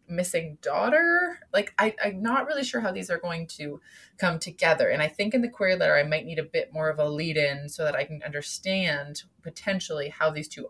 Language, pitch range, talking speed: English, 155-240 Hz, 225 wpm